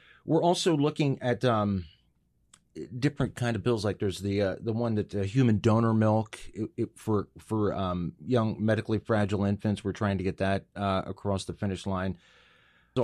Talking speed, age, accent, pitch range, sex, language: 185 wpm, 30-49, American, 90-115 Hz, male, English